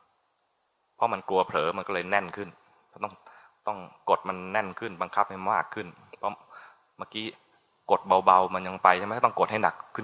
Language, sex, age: Thai, male, 20-39